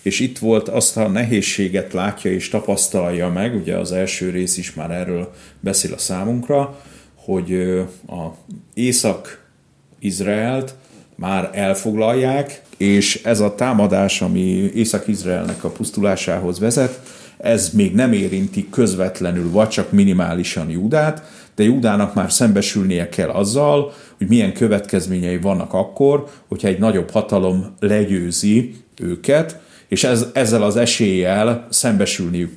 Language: Hungarian